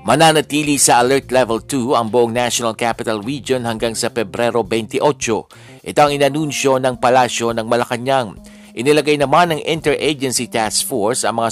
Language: Filipino